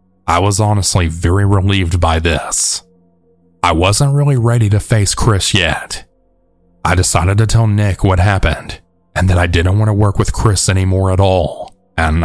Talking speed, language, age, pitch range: 170 wpm, English, 30-49, 85-105 Hz